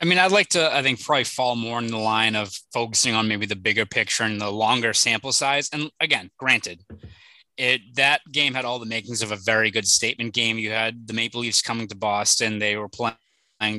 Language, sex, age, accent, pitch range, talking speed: English, male, 20-39, American, 105-125 Hz, 225 wpm